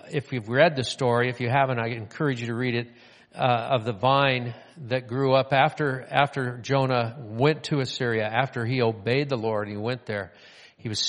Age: 50-69